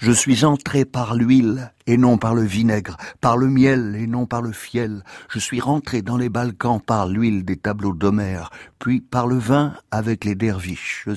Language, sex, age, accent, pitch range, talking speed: French, male, 60-79, French, 100-120 Hz, 200 wpm